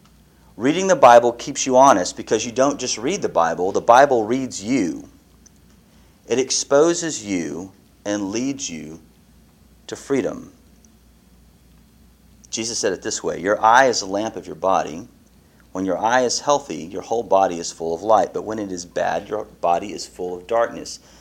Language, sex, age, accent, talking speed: English, male, 40-59, American, 175 wpm